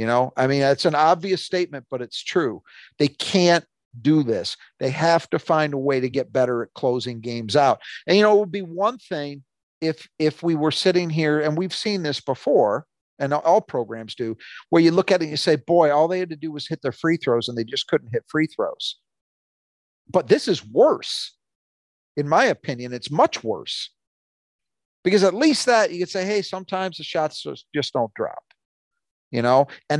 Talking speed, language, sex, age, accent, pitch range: 210 wpm, English, male, 50-69, American, 130-180 Hz